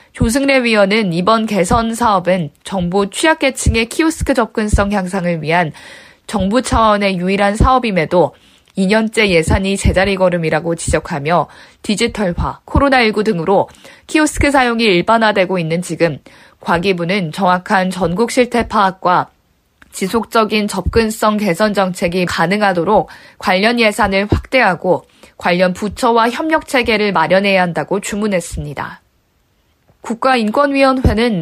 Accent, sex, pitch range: native, female, 180-230 Hz